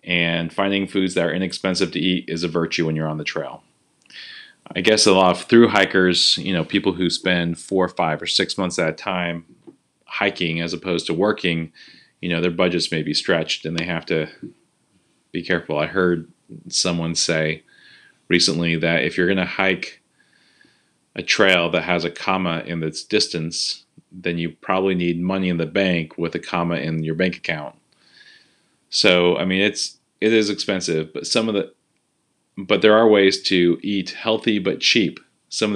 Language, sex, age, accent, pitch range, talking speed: English, male, 30-49, American, 85-95 Hz, 190 wpm